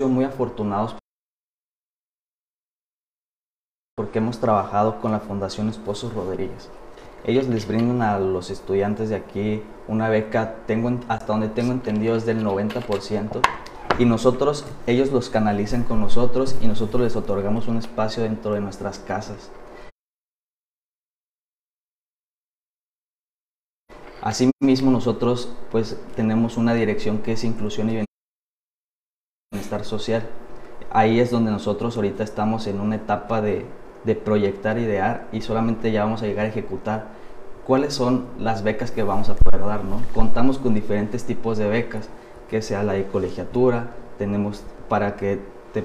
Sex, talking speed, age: male, 135 wpm, 20-39